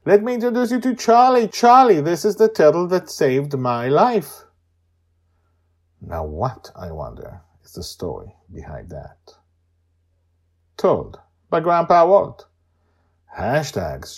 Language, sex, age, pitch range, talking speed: English, male, 50-69, 85-115 Hz, 125 wpm